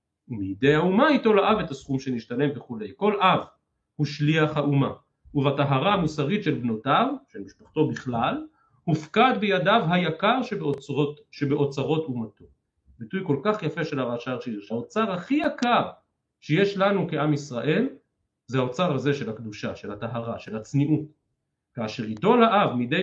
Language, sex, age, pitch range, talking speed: Hebrew, male, 40-59, 135-200 Hz, 135 wpm